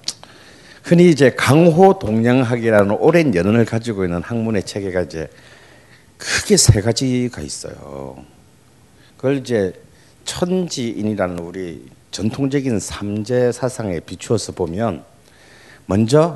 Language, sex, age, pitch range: Korean, male, 50-69, 100-150 Hz